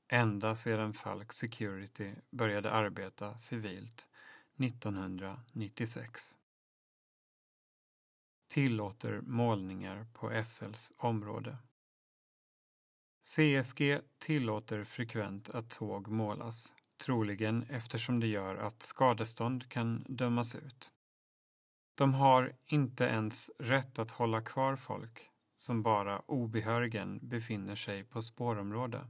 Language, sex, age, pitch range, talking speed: Swedish, male, 30-49, 110-125 Hz, 90 wpm